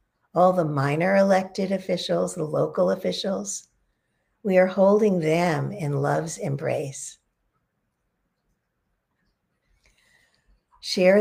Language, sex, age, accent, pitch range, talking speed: English, female, 50-69, American, 160-195 Hz, 85 wpm